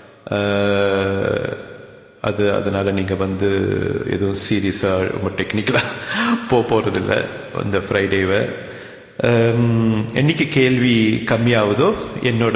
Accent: Indian